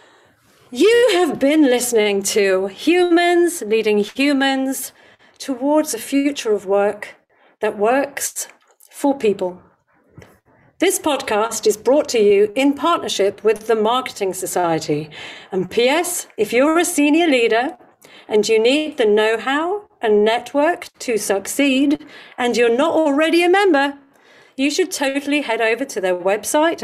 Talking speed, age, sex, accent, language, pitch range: 130 wpm, 50-69, female, British, English, 215-290 Hz